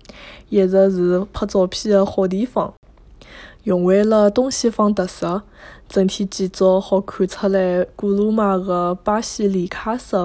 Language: Chinese